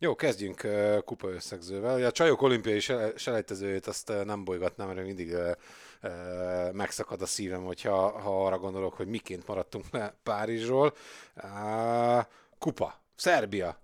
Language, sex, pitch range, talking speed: Hungarian, male, 95-130 Hz, 115 wpm